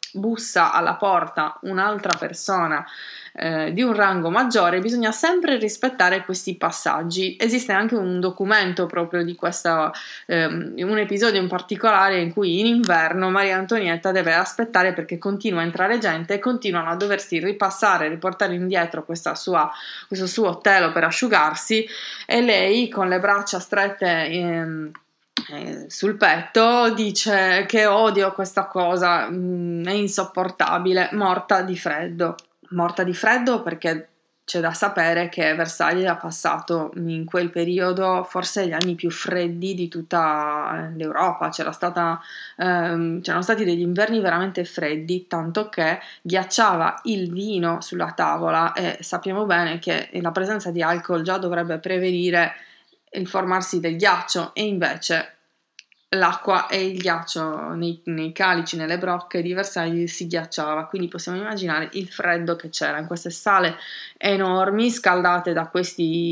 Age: 20-39